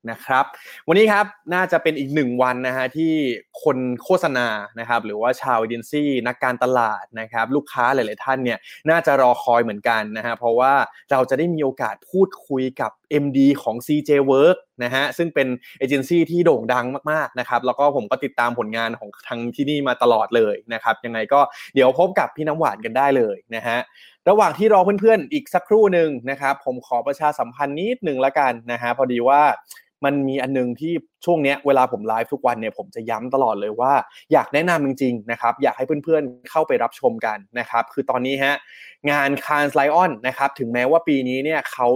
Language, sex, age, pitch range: Thai, male, 20-39, 120-155 Hz